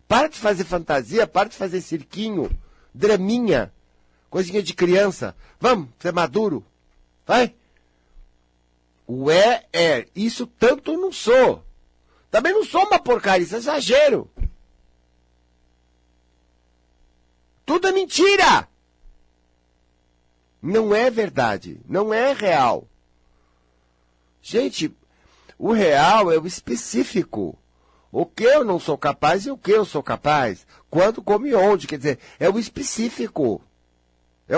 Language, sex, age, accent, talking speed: Portuguese, male, 50-69, Brazilian, 120 wpm